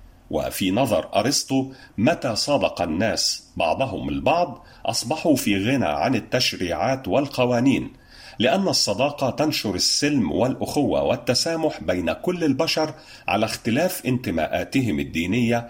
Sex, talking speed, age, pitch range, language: male, 105 wpm, 40-59, 105-140 Hz, Arabic